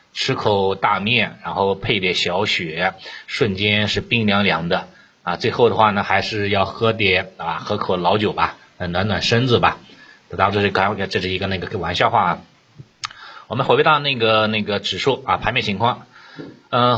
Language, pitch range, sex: Chinese, 95-120 Hz, male